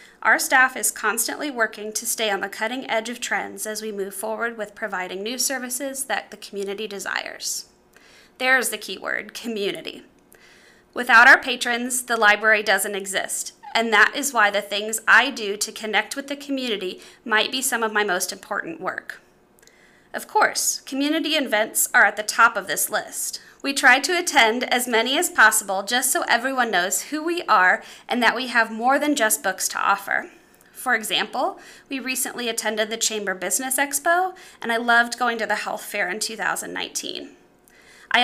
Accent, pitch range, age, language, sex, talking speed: American, 215-270 Hz, 20-39, English, female, 180 wpm